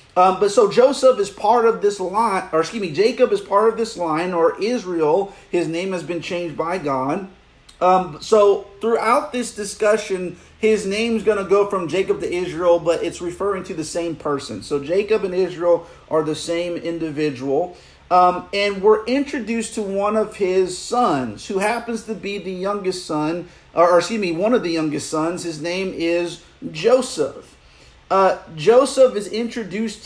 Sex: male